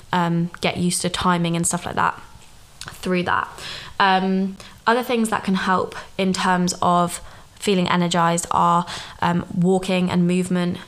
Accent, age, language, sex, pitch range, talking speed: British, 20-39, English, female, 175-185 Hz, 150 wpm